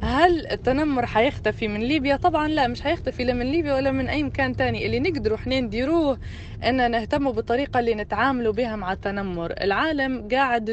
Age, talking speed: 20-39, 175 wpm